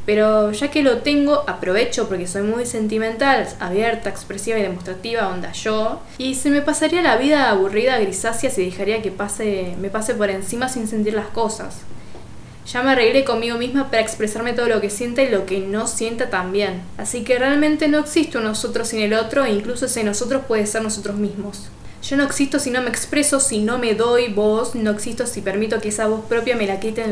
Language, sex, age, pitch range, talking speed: Spanish, female, 10-29, 205-255 Hz, 210 wpm